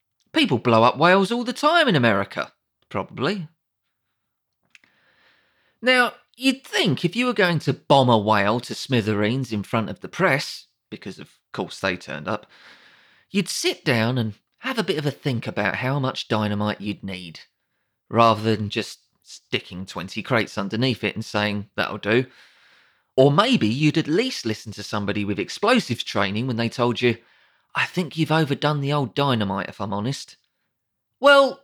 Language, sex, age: English, male, 30-49